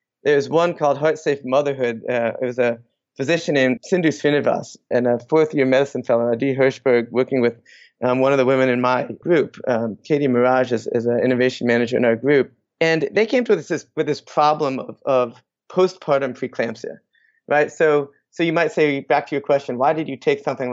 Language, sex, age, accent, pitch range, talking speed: English, male, 30-49, American, 125-160 Hz, 205 wpm